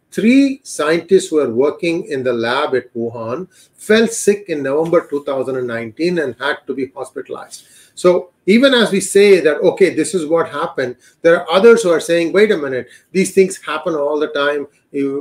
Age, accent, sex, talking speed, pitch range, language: 40-59, Indian, male, 185 wpm, 140-195 Hz, English